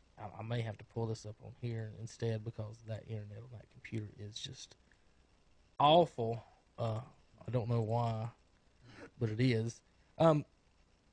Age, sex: 20-39, male